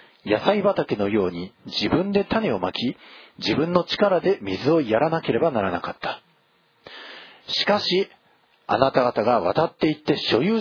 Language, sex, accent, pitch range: Japanese, male, native, 120-180 Hz